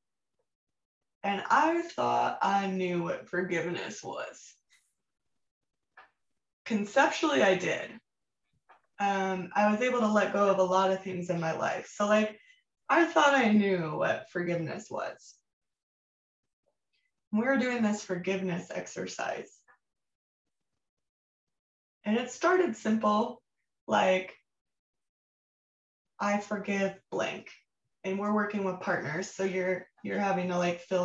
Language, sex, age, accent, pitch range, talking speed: English, female, 20-39, American, 180-215 Hz, 120 wpm